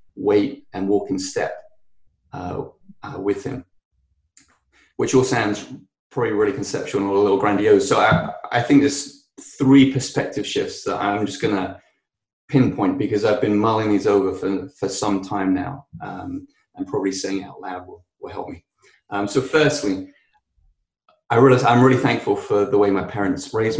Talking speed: 175 wpm